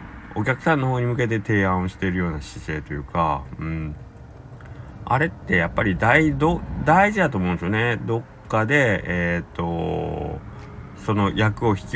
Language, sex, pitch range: Japanese, male, 85-115 Hz